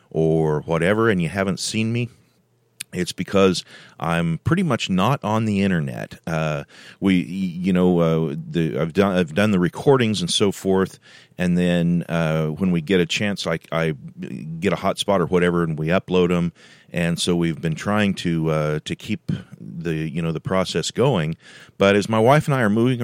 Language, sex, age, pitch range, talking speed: English, male, 40-59, 80-95 Hz, 190 wpm